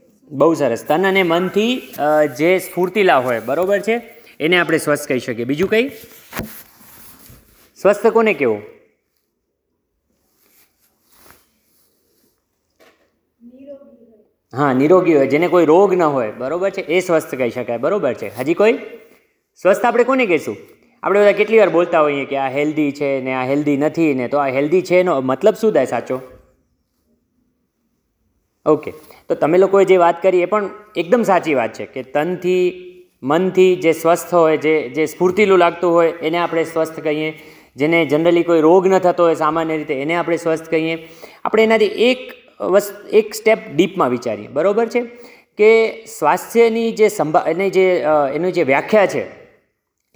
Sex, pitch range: male, 155-210 Hz